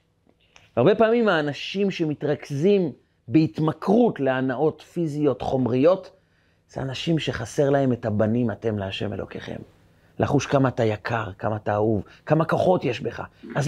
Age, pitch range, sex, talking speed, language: 30-49, 110-175 Hz, male, 125 wpm, Hebrew